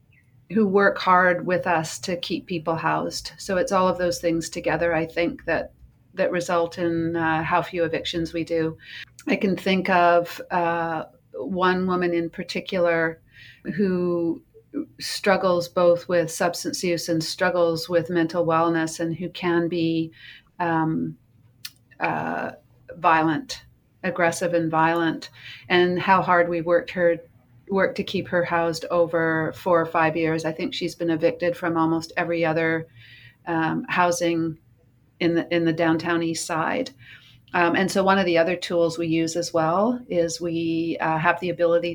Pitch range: 160-175 Hz